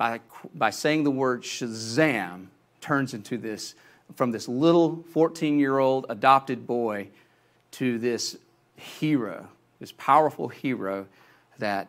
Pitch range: 110-135 Hz